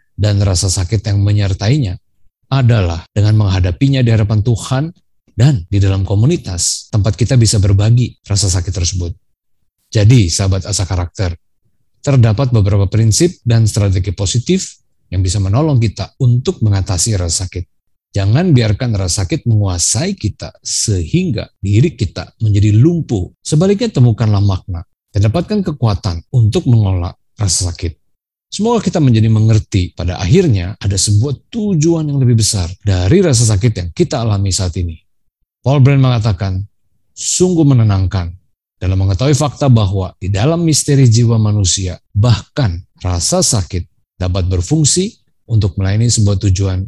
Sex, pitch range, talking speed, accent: male, 95-125 Hz, 130 wpm, native